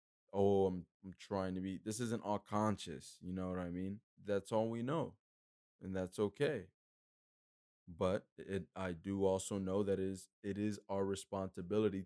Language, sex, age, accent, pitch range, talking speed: English, male, 20-39, American, 90-105 Hz, 175 wpm